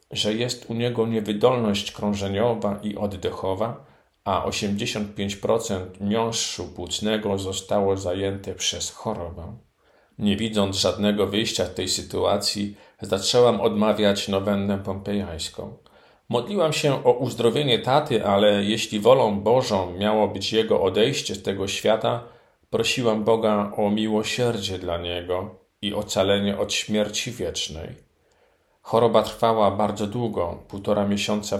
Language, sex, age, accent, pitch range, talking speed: Polish, male, 50-69, native, 100-110 Hz, 115 wpm